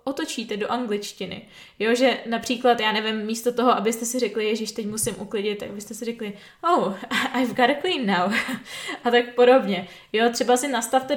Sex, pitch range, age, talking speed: female, 220-250 Hz, 20-39, 185 wpm